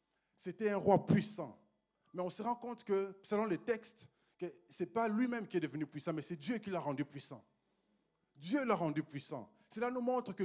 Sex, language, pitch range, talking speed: male, French, 150-200 Hz, 205 wpm